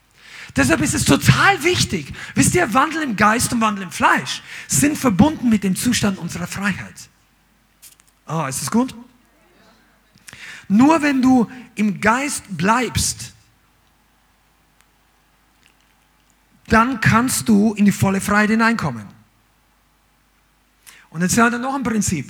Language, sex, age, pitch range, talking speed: German, male, 50-69, 155-220 Hz, 125 wpm